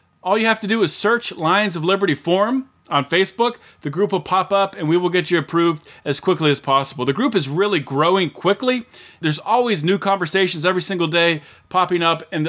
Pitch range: 150-195 Hz